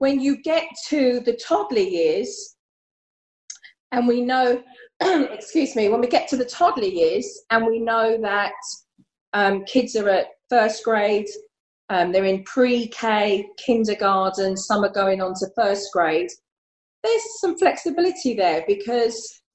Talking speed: 140 wpm